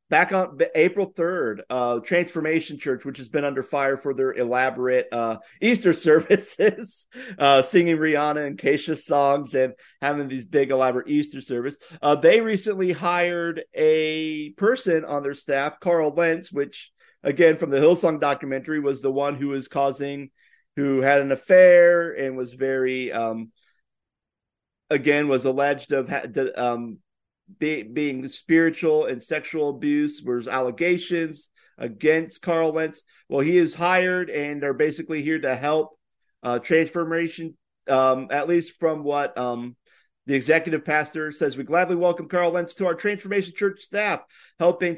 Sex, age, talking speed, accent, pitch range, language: male, 40-59, 145 wpm, American, 135-170 Hz, English